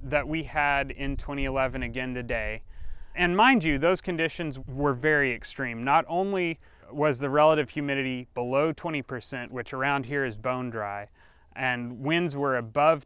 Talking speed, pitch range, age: 155 wpm, 125-155 Hz, 30-49